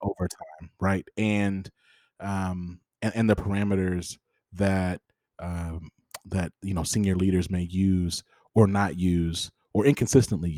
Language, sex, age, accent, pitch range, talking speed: English, male, 30-49, American, 90-110 Hz, 130 wpm